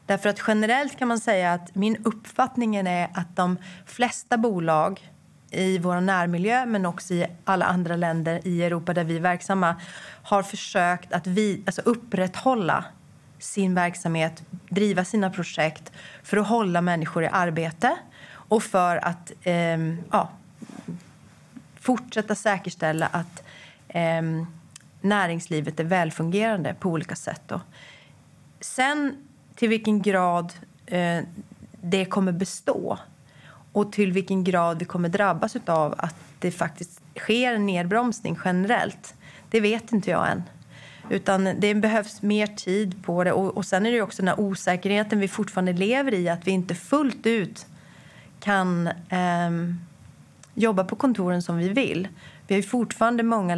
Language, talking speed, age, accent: Swedish, 135 wpm, 30-49, native